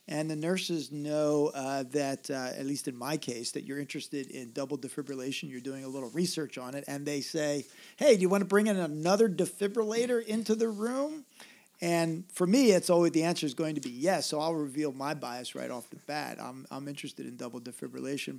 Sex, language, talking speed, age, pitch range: male, English, 220 wpm, 50-69, 135-175 Hz